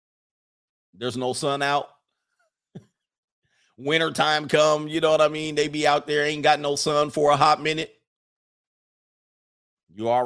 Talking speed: 145 wpm